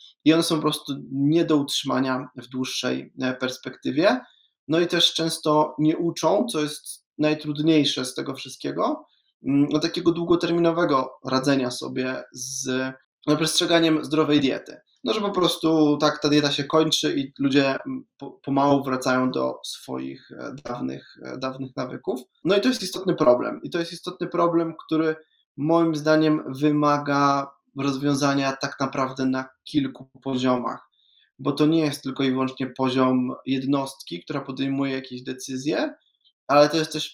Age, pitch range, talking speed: 20-39, 130-155 Hz, 140 wpm